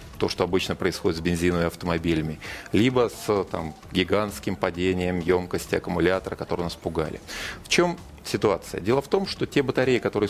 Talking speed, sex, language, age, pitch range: 150 wpm, male, Russian, 30-49, 90-115 Hz